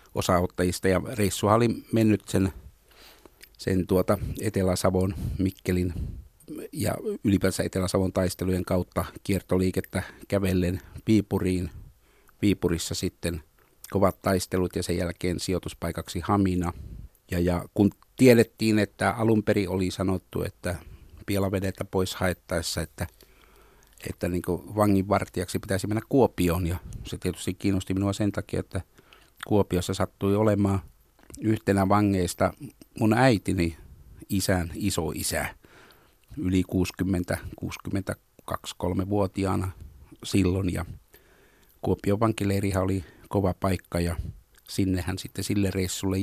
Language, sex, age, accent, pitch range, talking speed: Finnish, male, 50-69, native, 90-100 Hz, 105 wpm